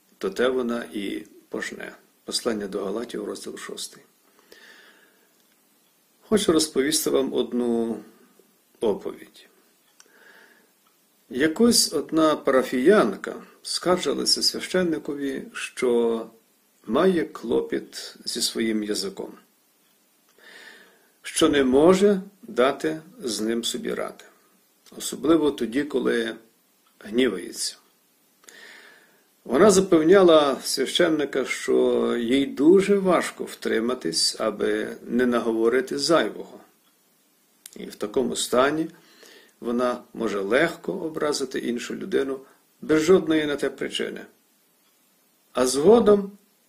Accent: native